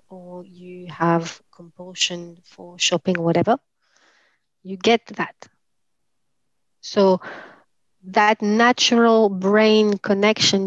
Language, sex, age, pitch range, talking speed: English, female, 30-49, 180-215 Hz, 85 wpm